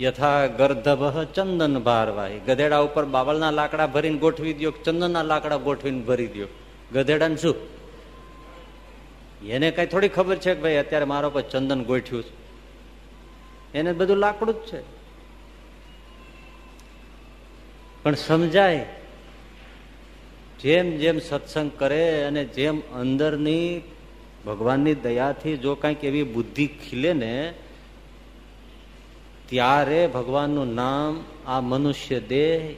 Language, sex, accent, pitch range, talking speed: Gujarati, male, native, 140-165 Hz, 70 wpm